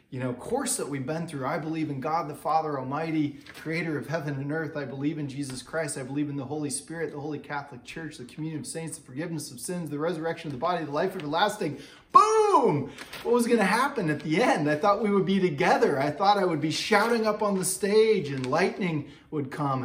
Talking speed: 235 wpm